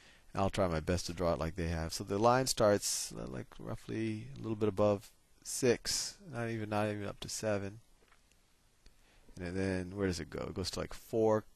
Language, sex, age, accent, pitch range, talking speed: English, male, 40-59, American, 85-110 Hz, 200 wpm